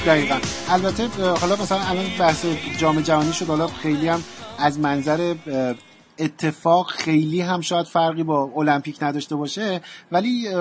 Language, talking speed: Persian, 135 wpm